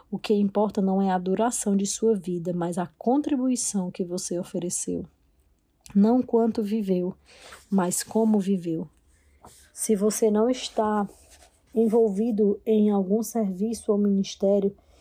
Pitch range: 195-220 Hz